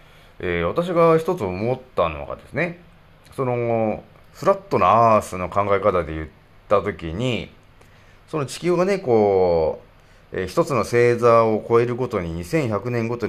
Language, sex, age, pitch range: Japanese, male, 40-59, 95-150 Hz